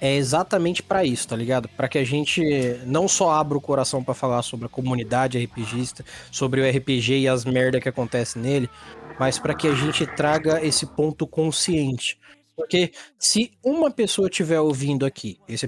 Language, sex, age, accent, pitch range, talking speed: Portuguese, male, 20-39, Brazilian, 135-180 Hz, 180 wpm